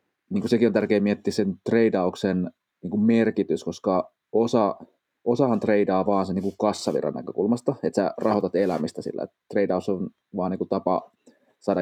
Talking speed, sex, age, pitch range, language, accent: 145 wpm, male, 30-49, 95-105 Hz, Finnish, native